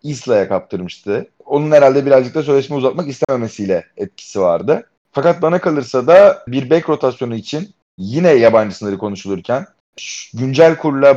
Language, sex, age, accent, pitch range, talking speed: Turkish, male, 30-49, native, 120-175 Hz, 140 wpm